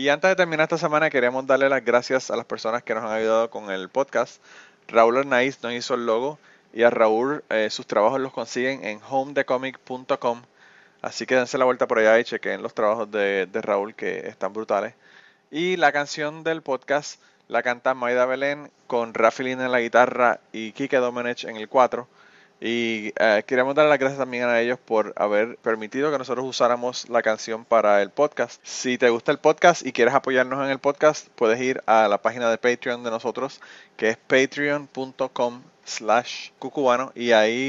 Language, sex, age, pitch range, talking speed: Spanish, male, 30-49, 115-130 Hz, 195 wpm